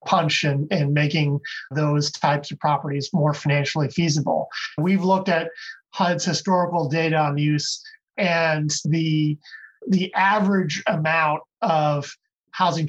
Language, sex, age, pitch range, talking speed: English, male, 30-49, 150-175 Hz, 115 wpm